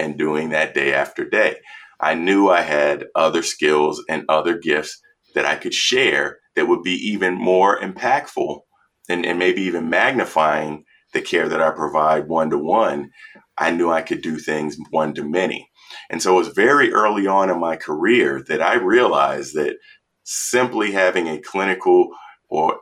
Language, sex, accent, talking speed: English, male, American, 175 wpm